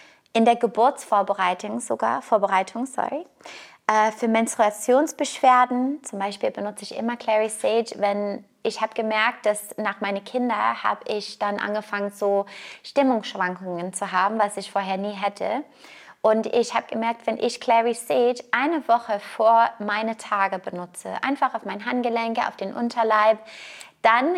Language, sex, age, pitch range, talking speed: German, female, 20-39, 210-245 Hz, 145 wpm